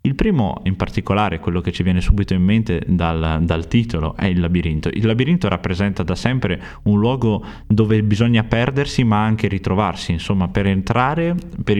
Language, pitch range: Italian, 90-110 Hz